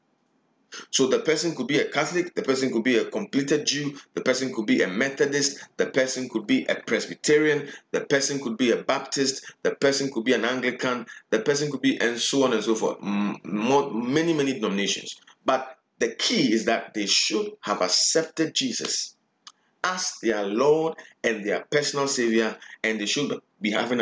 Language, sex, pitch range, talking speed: English, male, 115-155 Hz, 180 wpm